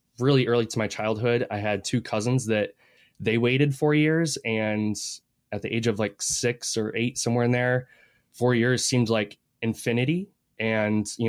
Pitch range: 110-125 Hz